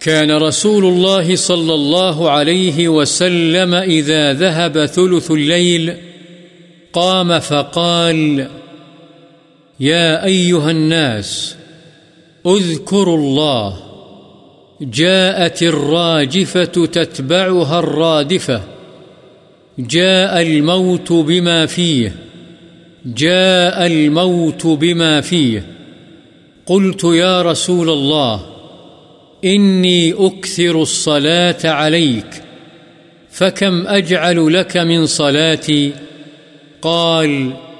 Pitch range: 155-180 Hz